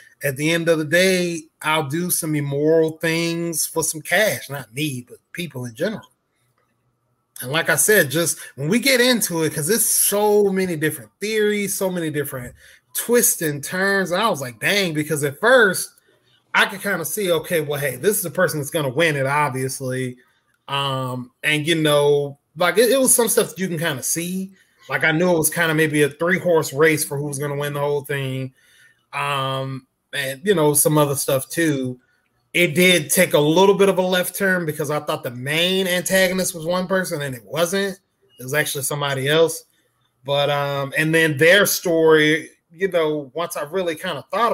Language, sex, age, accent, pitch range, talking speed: English, male, 20-39, American, 145-185 Hz, 205 wpm